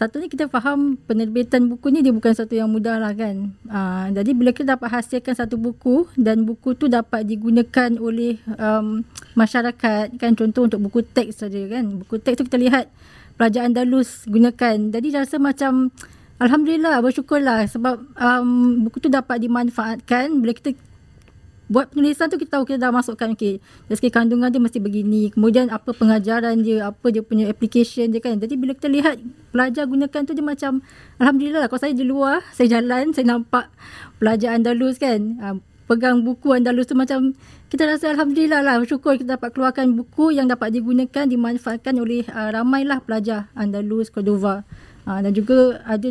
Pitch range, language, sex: 225-260 Hz, Malay, female